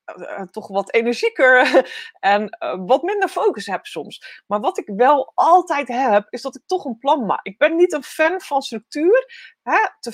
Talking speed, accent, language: 180 wpm, Dutch, Dutch